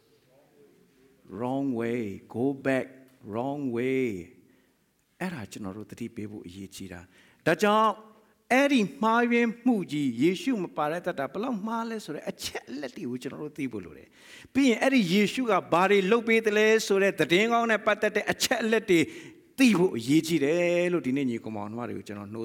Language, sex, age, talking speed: English, male, 60-79, 35 wpm